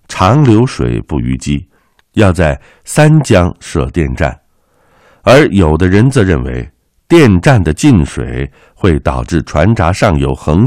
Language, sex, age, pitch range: Chinese, male, 60-79, 70-100 Hz